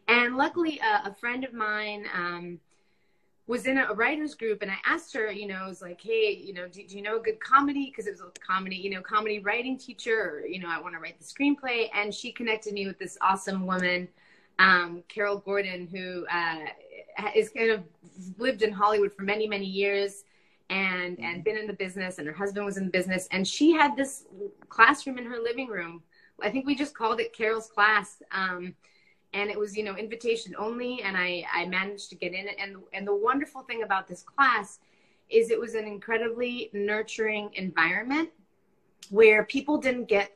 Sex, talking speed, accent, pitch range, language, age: female, 205 wpm, American, 190-240 Hz, English, 20-39